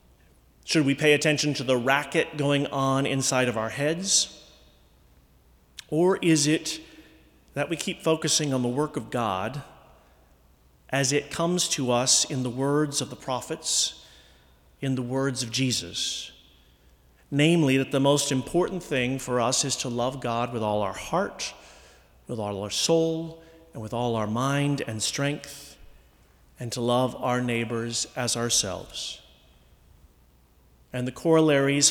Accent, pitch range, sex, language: American, 105-150 Hz, male, English